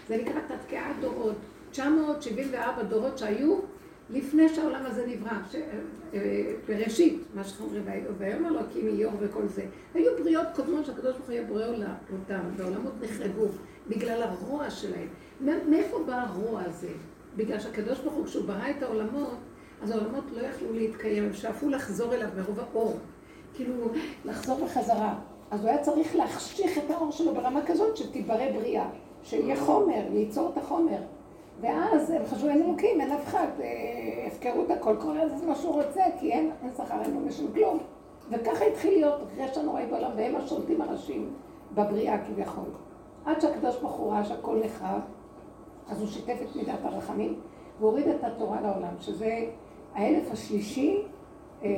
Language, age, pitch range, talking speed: Hebrew, 60-79, 220-315 Hz, 155 wpm